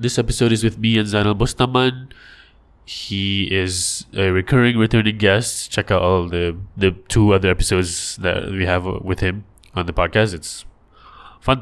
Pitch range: 90-110 Hz